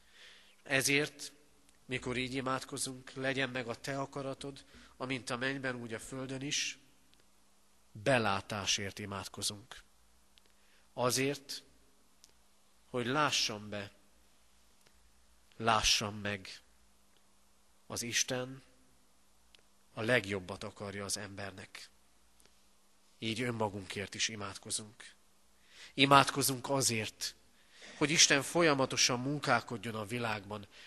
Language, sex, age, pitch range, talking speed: Hungarian, male, 40-59, 105-130 Hz, 85 wpm